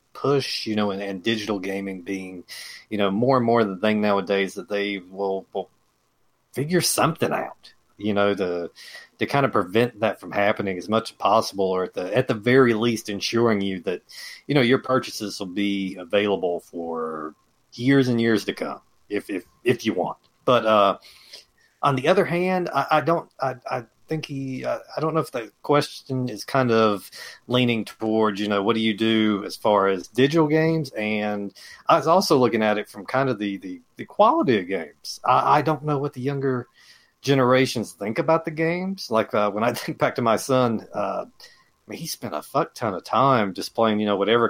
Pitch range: 100-140 Hz